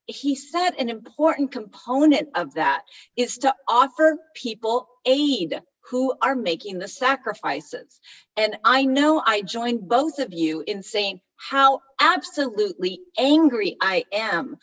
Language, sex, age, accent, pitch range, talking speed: English, female, 40-59, American, 205-290 Hz, 130 wpm